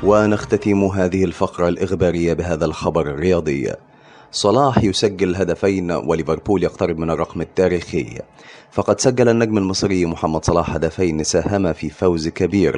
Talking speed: 120 wpm